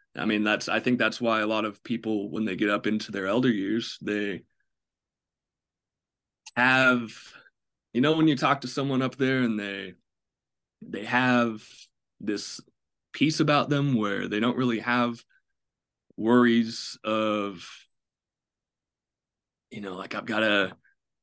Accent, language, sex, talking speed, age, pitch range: American, English, male, 145 wpm, 20-39, 100-120 Hz